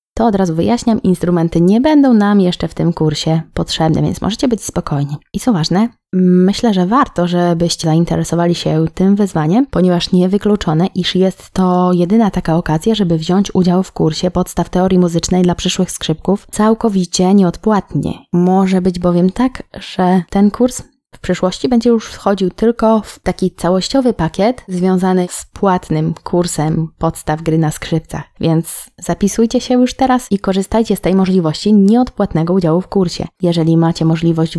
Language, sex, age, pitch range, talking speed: Polish, female, 20-39, 165-200 Hz, 160 wpm